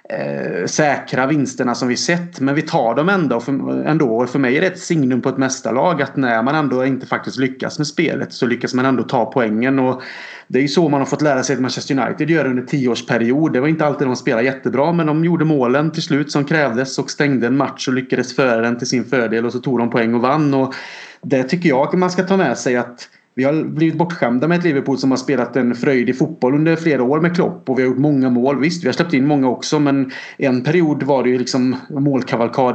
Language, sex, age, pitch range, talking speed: Swedish, male, 30-49, 125-150 Hz, 255 wpm